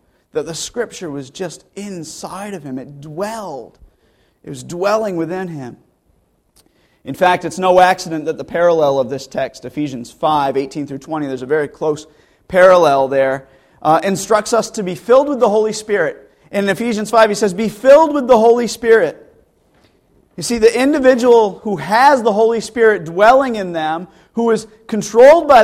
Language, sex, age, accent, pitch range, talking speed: English, male, 40-59, American, 155-230 Hz, 175 wpm